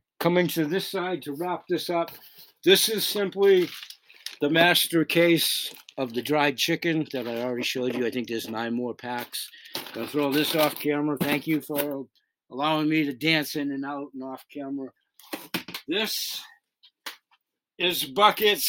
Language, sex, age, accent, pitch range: Chinese, male, 60-79, American, 125-170 Hz